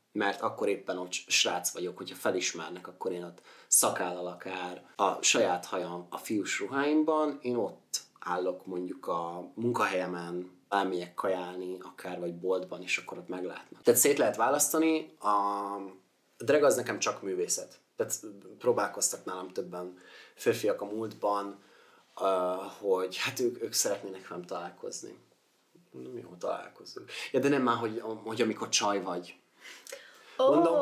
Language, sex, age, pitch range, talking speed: Hungarian, male, 30-49, 95-140 Hz, 140 wpm